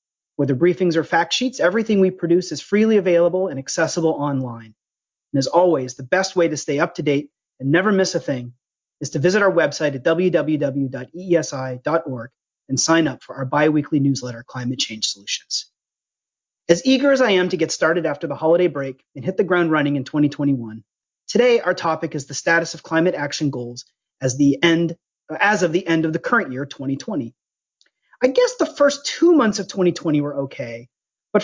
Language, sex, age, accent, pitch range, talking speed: English, male, 30-49, American, 140-185 Hz, 185 wpm